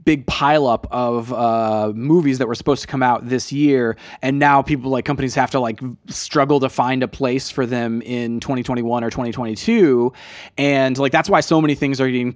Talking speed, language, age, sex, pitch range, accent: 200 wpm, English, 20-39, male, 120-145 Hz, American